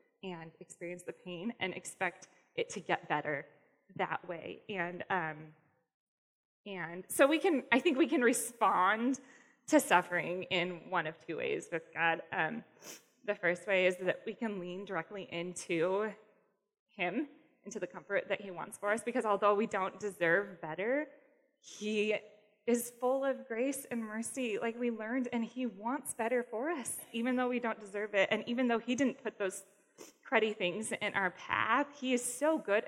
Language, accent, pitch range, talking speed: English, American, 185-250 Hz, 175 wpm